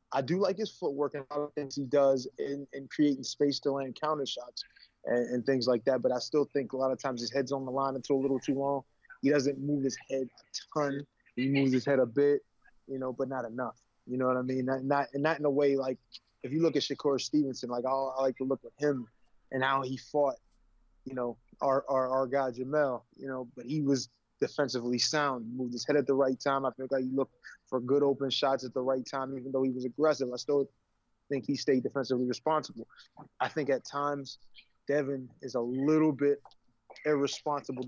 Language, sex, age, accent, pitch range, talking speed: English, male, 20-39, American, 130-145 Hz, 235 wpm